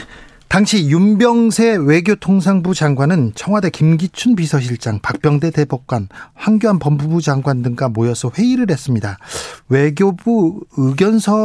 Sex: male